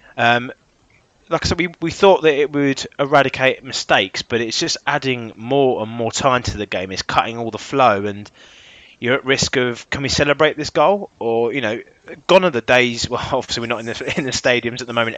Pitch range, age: 110-130 Hz, 20-39